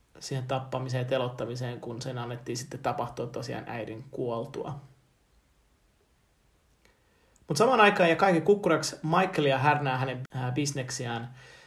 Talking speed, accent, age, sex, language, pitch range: 115 wpm, native, 30-49, male, Finnish, 125-155 Hz